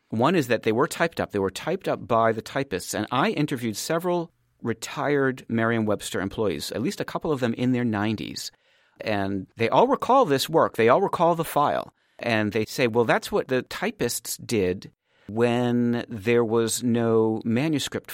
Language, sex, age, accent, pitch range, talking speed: English, male, 40-59, American, 105-130 Hz, 180 wpm